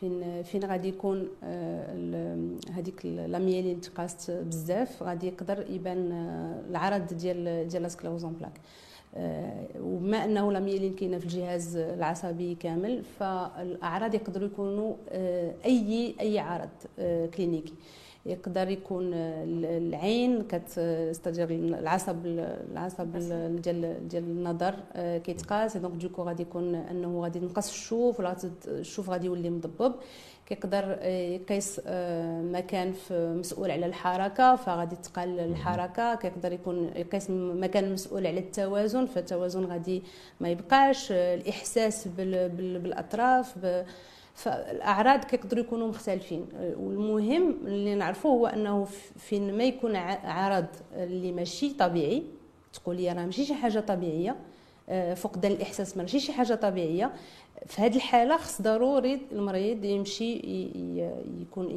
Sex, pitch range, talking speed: female, 175-205 Hz, 110 wpm